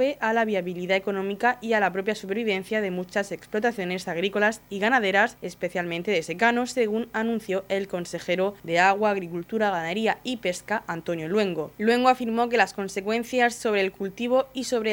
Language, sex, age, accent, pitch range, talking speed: Spanish, female, 20-39, Spanish, 185-225 Hz, 160 wpm